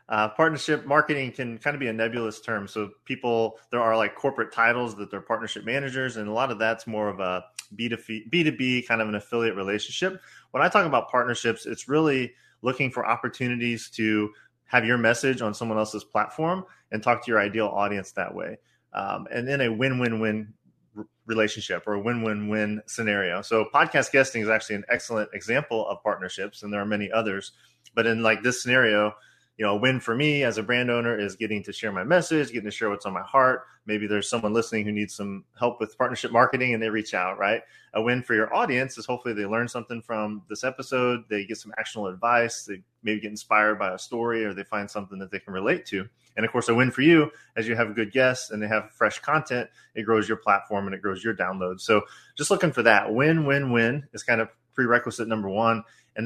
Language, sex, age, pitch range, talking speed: English, male, 30-49, 105-125 Hz, 230 wpm